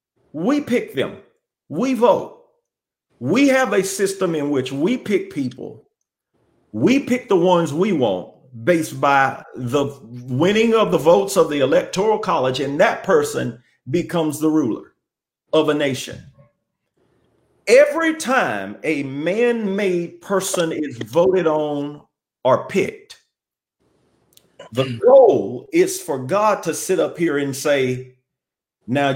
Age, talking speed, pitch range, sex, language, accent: 50-69, 130 wpm, 145-230 Hz, male, English, American